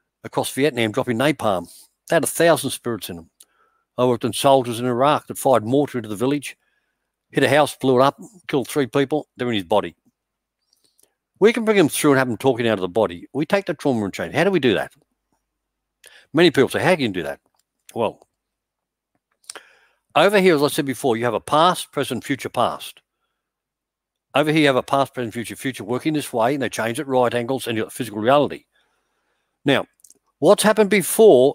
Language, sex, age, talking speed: English, male, 60-79, 210 wpm